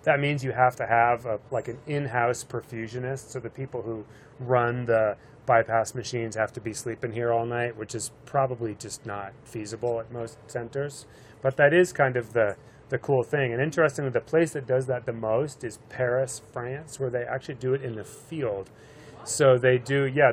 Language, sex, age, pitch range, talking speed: English, male, 30-49, 115-135 Hz, 200 wpm